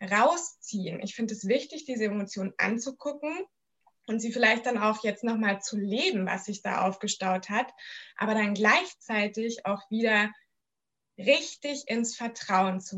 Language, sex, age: German, female, 20-39